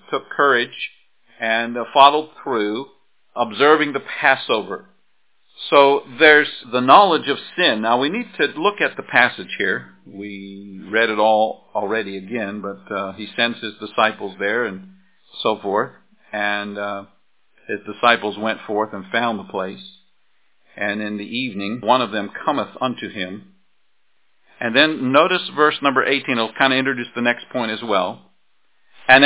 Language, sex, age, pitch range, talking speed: English, male, 50-69, 105-145 Hz, 155 wpm